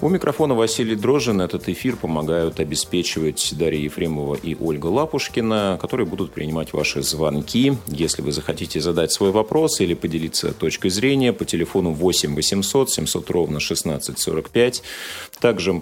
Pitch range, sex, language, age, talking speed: 80-110 Hz, male, Russian, 40-59, 135 wpm